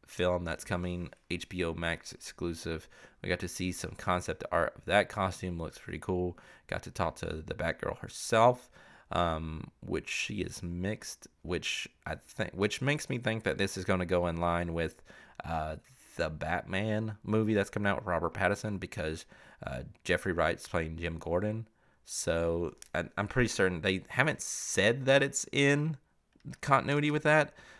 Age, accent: 30-49, American